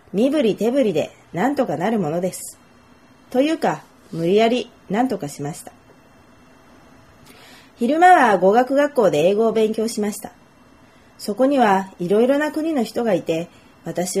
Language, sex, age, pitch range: Japanese, female, 30-49, 180-270 Hz